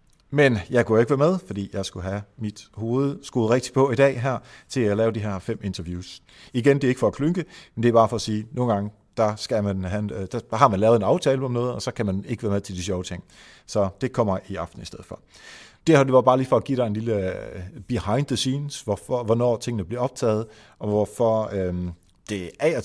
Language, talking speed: Danish, 255 wpm